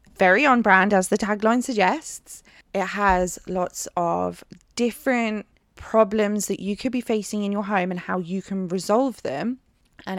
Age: 20-39